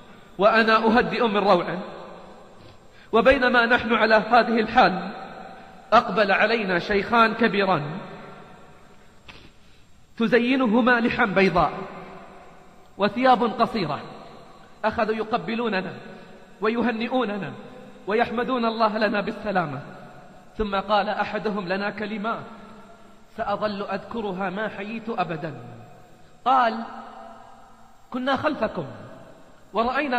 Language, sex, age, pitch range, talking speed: Arabic, male, 40-59, 190-230 Hz, 80 wpm